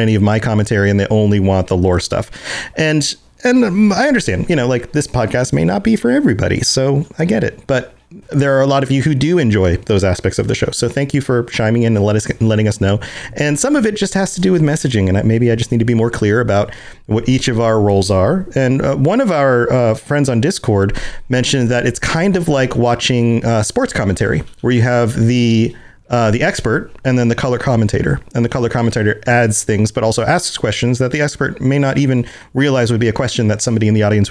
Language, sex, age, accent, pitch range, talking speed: English, male, 40-59, American, 105-135 Hz, 235 wpm